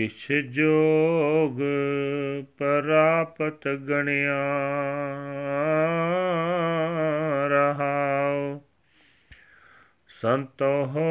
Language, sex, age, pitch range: Punjabi, male, 40-59, 140-160 Hz